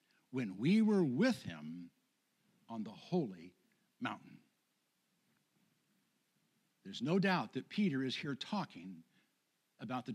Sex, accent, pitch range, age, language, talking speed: male, American, 175-235 Hz, 60-79, English, 110 wpm